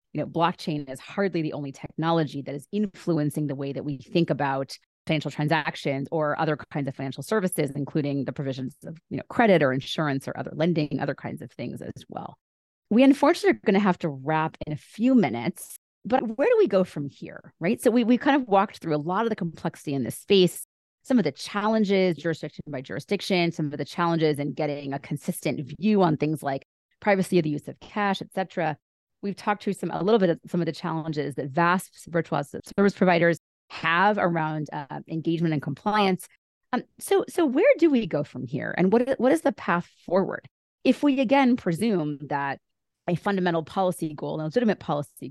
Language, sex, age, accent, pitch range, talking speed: English, female, 30-49, American, 155-205 Hz, 210 wpm